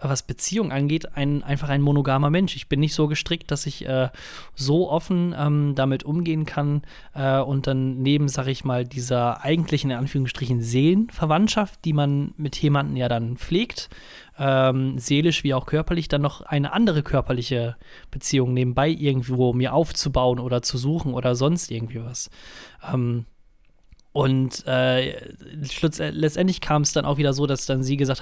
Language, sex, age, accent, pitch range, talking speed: German, male, 20-39, German, 130-150 Hz, 165 wpm